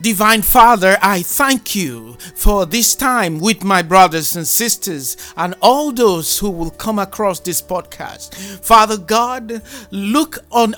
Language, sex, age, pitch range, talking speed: English, male, 50-69, 185-235 Hz, 145 wpm